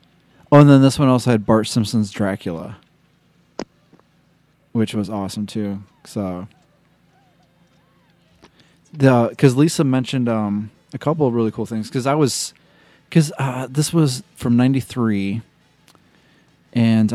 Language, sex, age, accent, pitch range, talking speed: English, male, 30-49, American, 105-135 Hz, 125 wpm